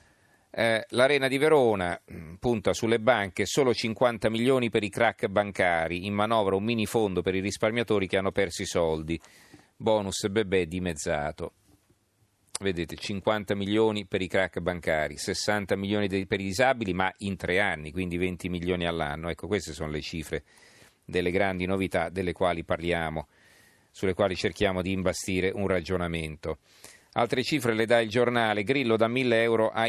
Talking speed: 155 wpm